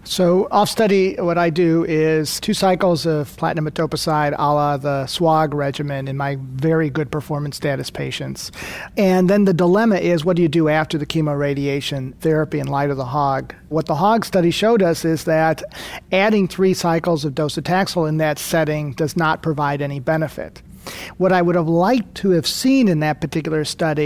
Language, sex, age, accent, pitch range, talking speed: English, male, 40-59, American, 150-175 Hz, 185 wpm